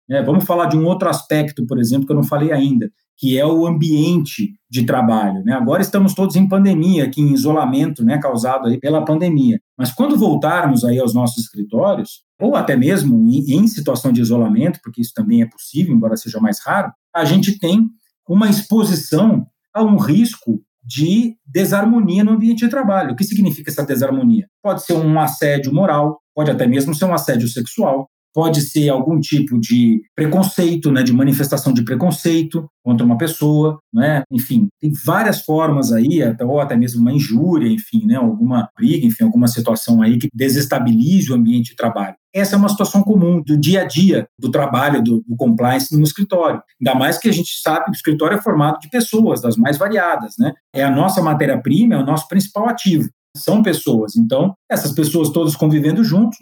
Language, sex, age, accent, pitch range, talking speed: Portuguese, male, 50-69, Brazilian, 135-195 Hz, 190 wpm